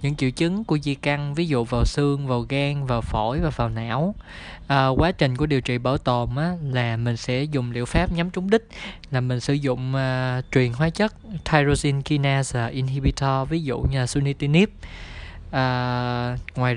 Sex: male